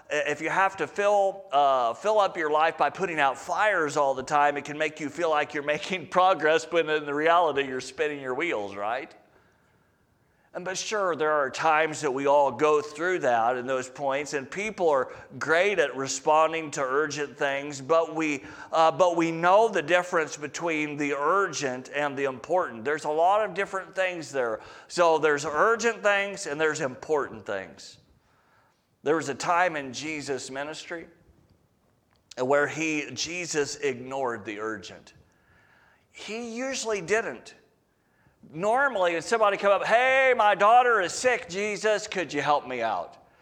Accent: American